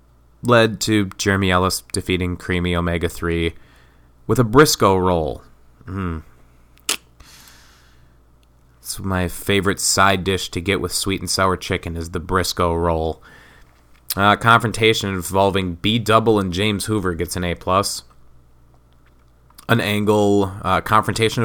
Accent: American